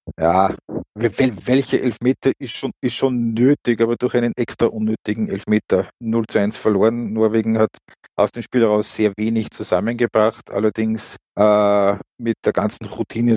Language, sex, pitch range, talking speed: German, male, 100-115 Hz, 150 wpm